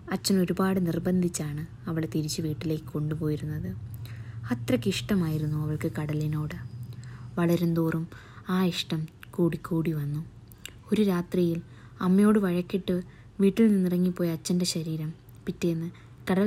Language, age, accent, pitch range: Malayalam, 20-39, native, 155-180 Hz